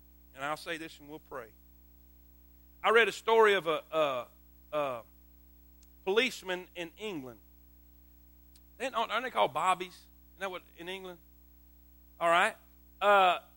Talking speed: 130 wpm